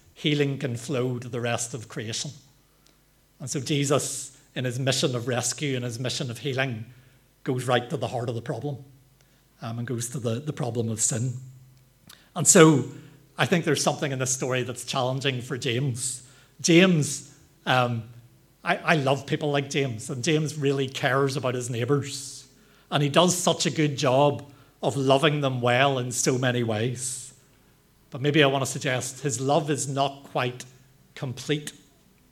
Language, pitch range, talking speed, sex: English, 125-145 Hz, 170 wpm, male